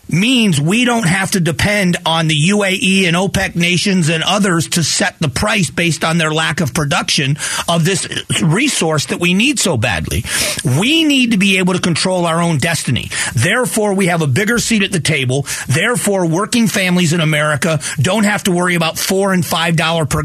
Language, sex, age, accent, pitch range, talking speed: English, male, 40-59, American, 150-190 Hz, 195 wpm